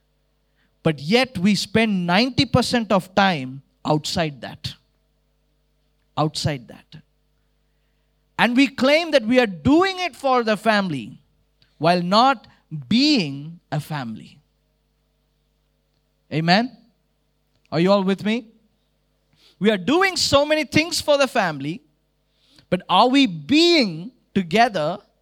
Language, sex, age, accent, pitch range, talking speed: English, male, 20-39, Indian, 170-250 Hz, 110 wpm